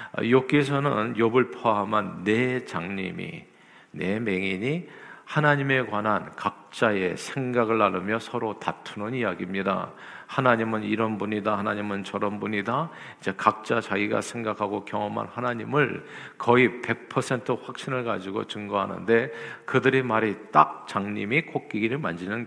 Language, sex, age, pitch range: Korean, male, 50-69, 105-130 Hz